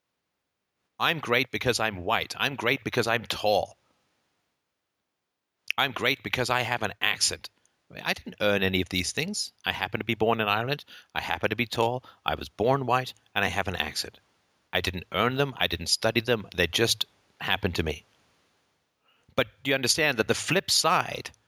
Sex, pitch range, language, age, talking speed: male, 100-130 Hz, English, 50-69, 190 wpm